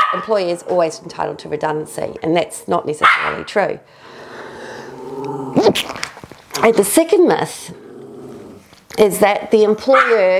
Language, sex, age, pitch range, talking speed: English, female, 40-59, 170-240 Hz, 110 wpm